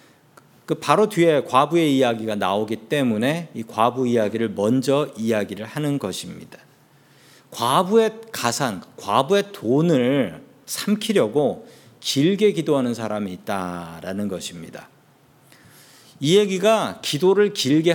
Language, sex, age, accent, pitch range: Korean, male, 40-59, native, 125-190 Hz